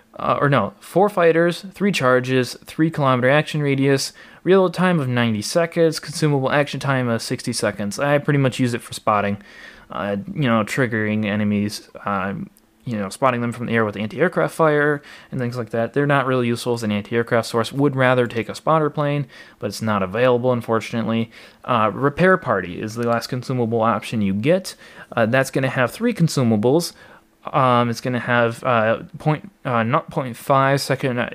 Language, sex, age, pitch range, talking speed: English, male, 20-39, 115-155 Hz, 180 wpm